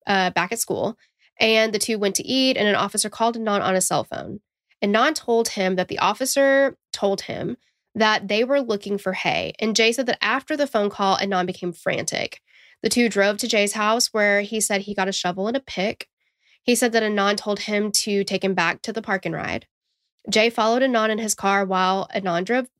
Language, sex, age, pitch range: English, female, 10-29, 190-225 Hz